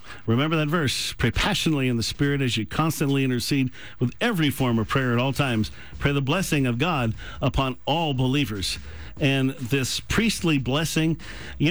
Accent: American